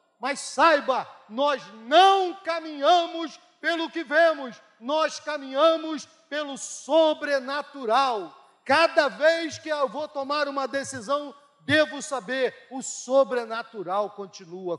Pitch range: 240-310 Hz